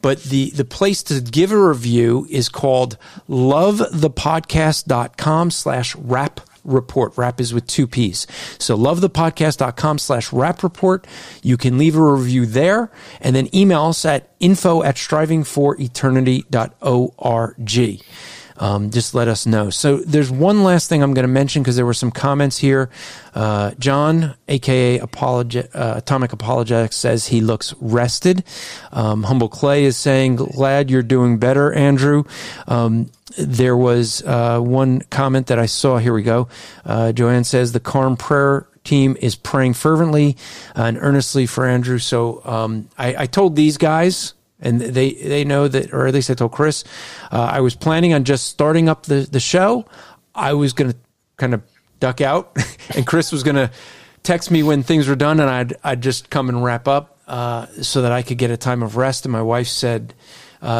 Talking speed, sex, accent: 180 wpm, male, American